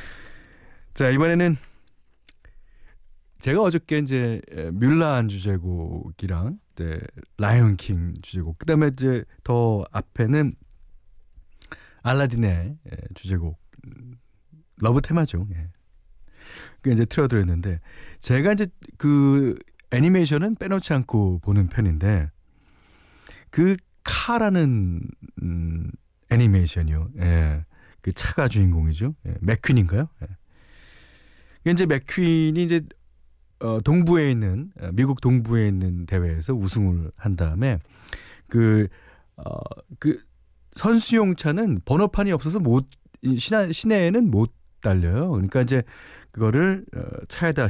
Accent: native